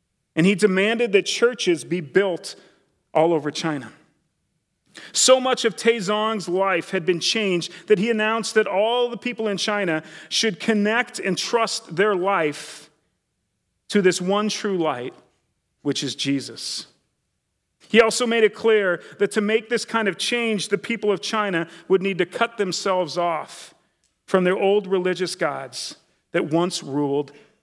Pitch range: 165-215 Hz